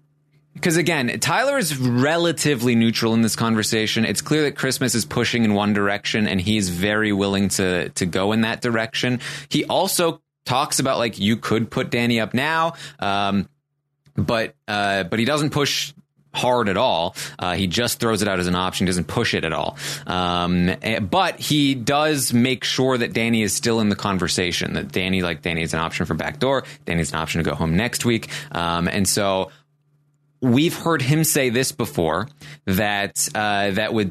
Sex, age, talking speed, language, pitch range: male, 20-39, 190 wpm, English, 100-145 Hz